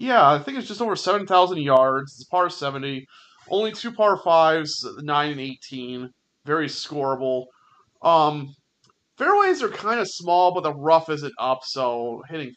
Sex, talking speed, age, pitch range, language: male, 155 wpm, 30-49, 130-180 Hz, English